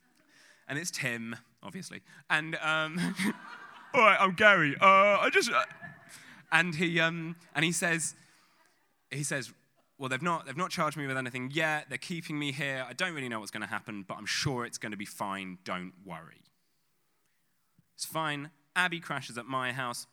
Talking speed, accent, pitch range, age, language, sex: 175 wpm, British, 115-165 Hz, 20-39, English, male